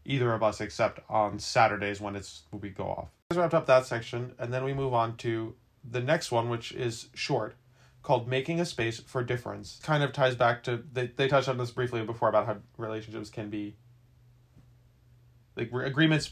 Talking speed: 200 wpm